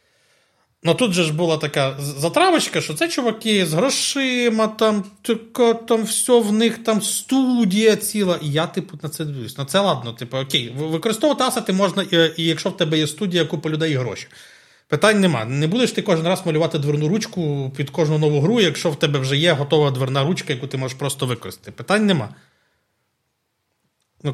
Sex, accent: male, native